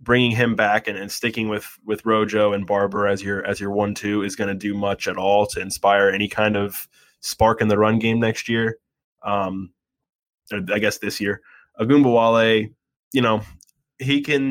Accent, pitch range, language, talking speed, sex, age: American, 100-115 Hz, English, 195 wpm, male, 20-39